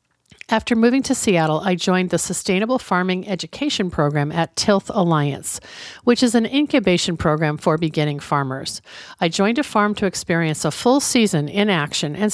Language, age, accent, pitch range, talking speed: English, 50-69, American, 155-215 Hz, 165 wpm